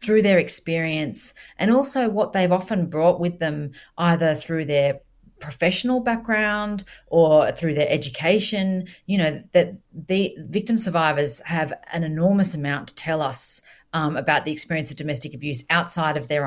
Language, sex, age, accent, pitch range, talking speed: English, female, 40-59, Australian, 150-180 Hz, 155 wpm